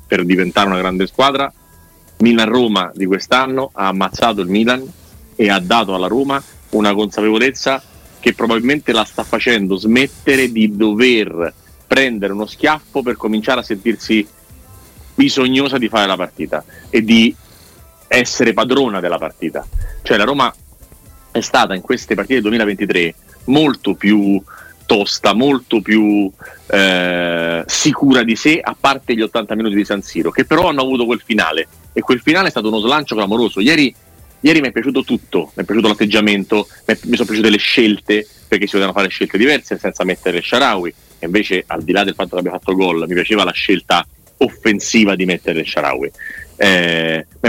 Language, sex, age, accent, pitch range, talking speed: Italian, male, 40-59, native, 95-120 Hz, 165 wpm